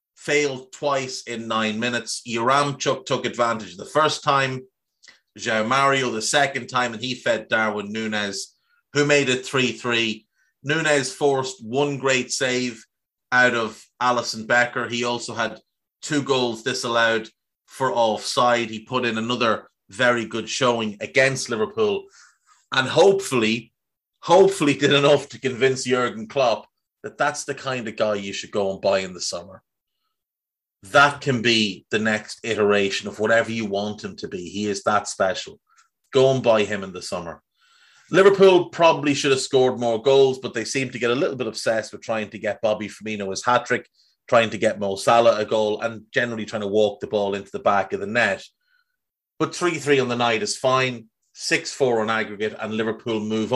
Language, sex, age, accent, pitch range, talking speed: English, male, 30-49, Irish, 110-135 Hz, 175 wpm